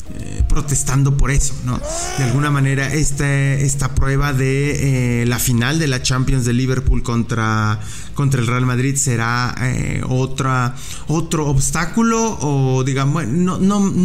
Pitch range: 120-140 Hz